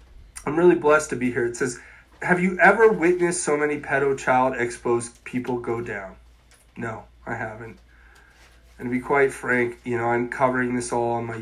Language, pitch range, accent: English, 115-160 Hz, American